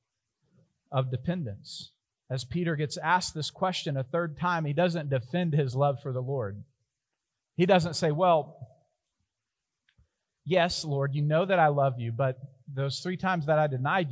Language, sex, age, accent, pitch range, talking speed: English, male, 40-59, American, 130-185 Hz, 160 wpm